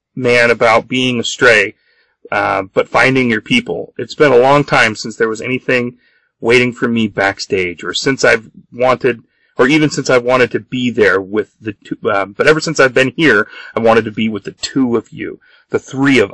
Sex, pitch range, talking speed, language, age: male, 110-145 Hz, 205 wpm, English, 30-49